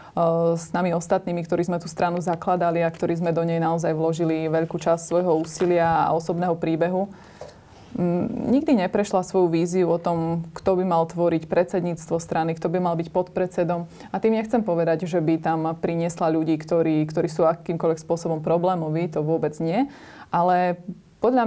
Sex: female